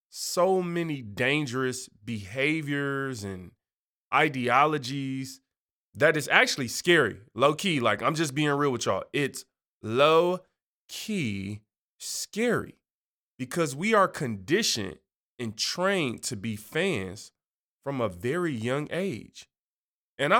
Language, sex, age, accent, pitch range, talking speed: English, male, 20-39, American, 125-170 Hz, 105 wpm